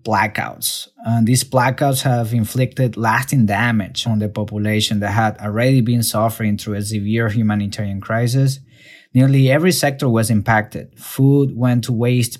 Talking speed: 145 wpm